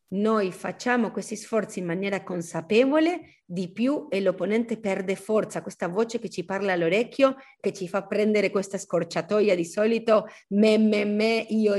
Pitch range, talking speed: 175-215 Hz, 160 wpm